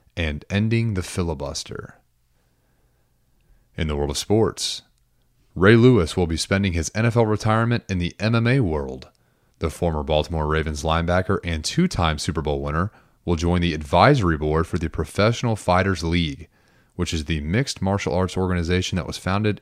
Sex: male